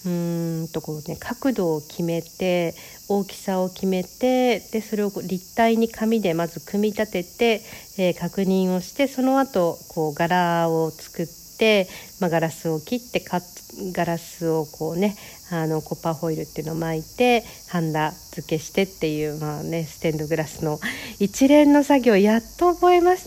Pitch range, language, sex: 165-210 Hz, Japanese, female